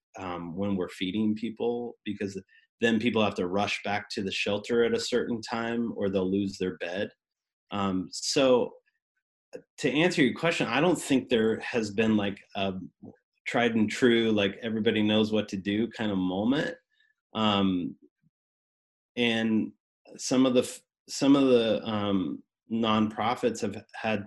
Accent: American